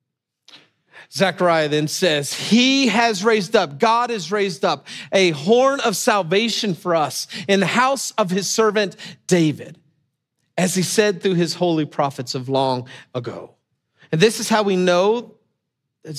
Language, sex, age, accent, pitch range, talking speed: English, male, 40-59, American, 150-205 Hz, 150 wpm